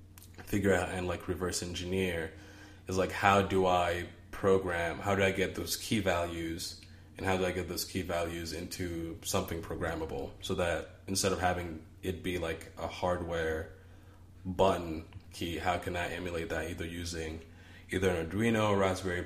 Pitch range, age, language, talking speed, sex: 85-95 Hz, 20-39, English, 170 wpm, male